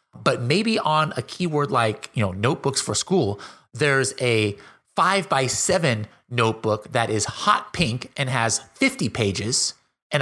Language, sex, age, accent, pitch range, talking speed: English, male, 30-49, American, 115-170 Hz, 155 wpm